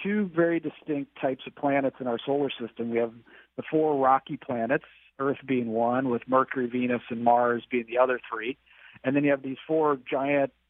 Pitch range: 115-140 Hz